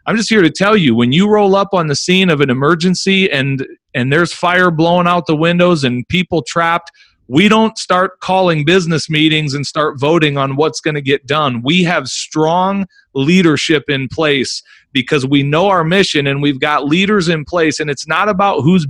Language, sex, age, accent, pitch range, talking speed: English, male, 40-59, American, 135-175 Hz, 205 wpm